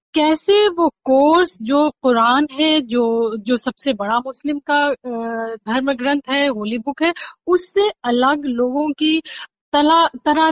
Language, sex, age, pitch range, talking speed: Hindi, female, 40-59, 245-320 Hz, 130 wpm